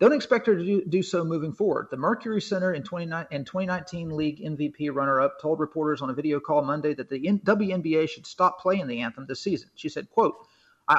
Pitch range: 140-175 Hz